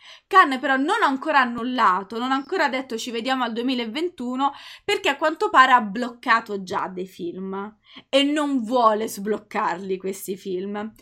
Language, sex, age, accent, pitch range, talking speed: Italian, female, 20-39, native, 205-245 Hz, 160 wpm